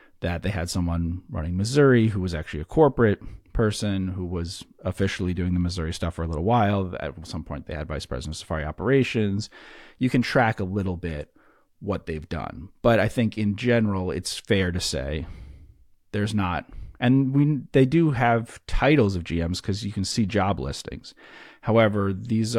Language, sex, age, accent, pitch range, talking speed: English, male, 40-59, American, 80-110 Hz, 185 wpm